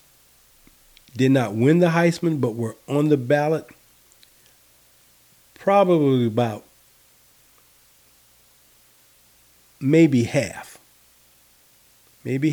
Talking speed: 70 wpm